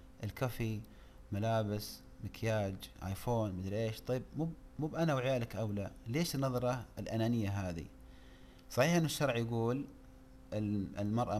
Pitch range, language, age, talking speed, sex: 105-130 Hz, Arabic, 30-49, 110 wpm, male